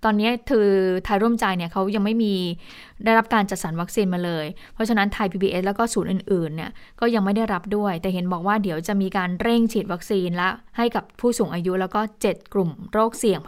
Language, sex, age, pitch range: Thai, female, 20-39, 185-225 Hz